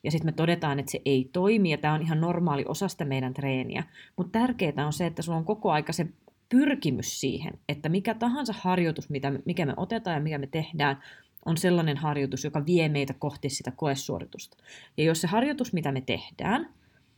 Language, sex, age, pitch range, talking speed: Finnish, female, 30-49, 140-180 Hz, 195 wpm